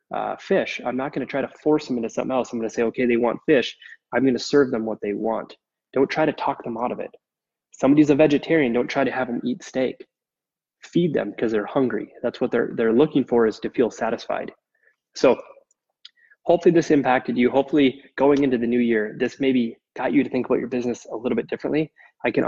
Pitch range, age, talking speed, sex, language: 115-140 Hz, 20-39, 235 wpm, male, English